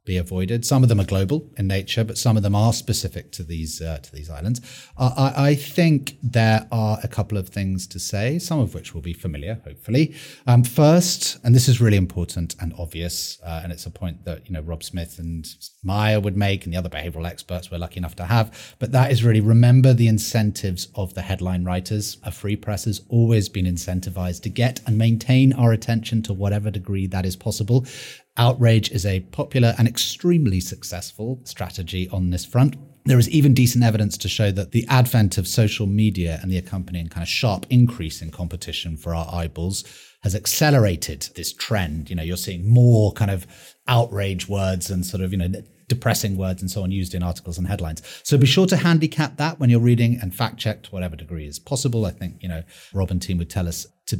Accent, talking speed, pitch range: British, 215 wpm, 90-120 Hz